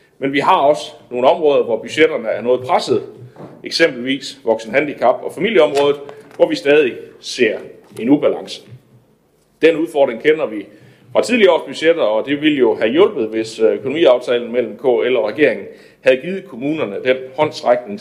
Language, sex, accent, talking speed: Danish, male, native, 155 wpm